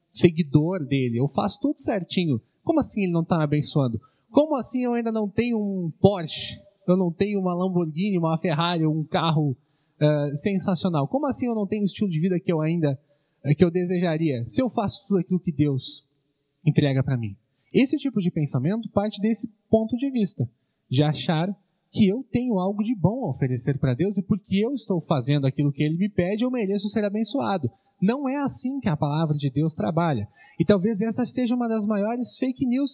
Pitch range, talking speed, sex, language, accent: 155-220 Hz, 205 wpm, male, Portuguese, Brazilian